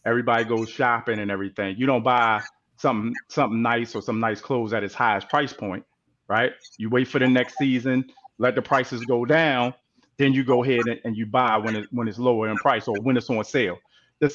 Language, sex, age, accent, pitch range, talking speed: English, male, 30-49, American, 120-145 Hz, 220 wpm